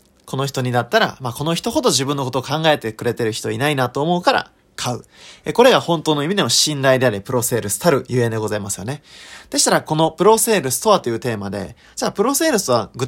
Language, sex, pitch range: Japanese, male, 110-155 Hz